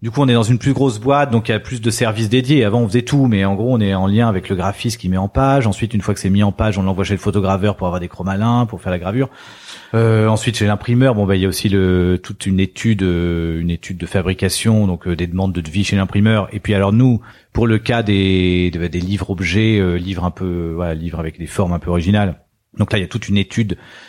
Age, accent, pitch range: 40-59, French, 90-115 Hz